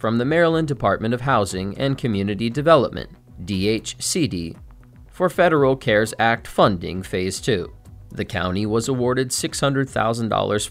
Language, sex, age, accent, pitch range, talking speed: English, male, 30-49, American, 100-140 Hz, 125 wpm